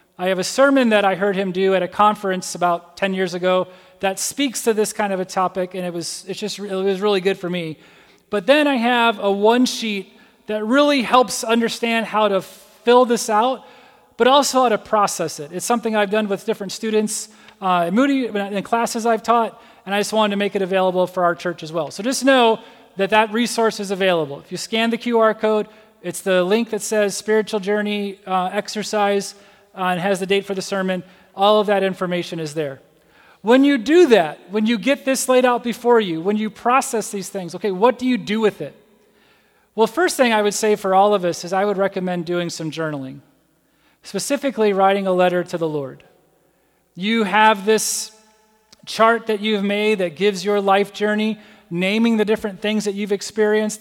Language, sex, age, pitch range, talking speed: English, male, 30-49, 190-225 Hz, 210 wpm